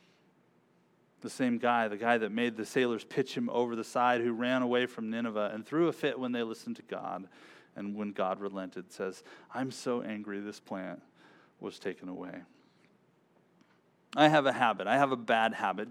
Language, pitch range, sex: English, 110-160 Hz, male